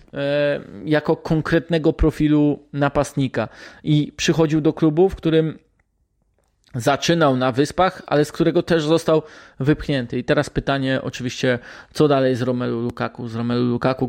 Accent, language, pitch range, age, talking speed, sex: native, Polish, 125-155 Hz, 20-39, 130 wpm, male